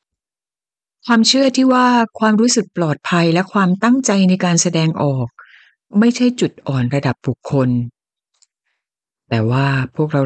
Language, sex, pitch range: Thai, female, 155-225 Hz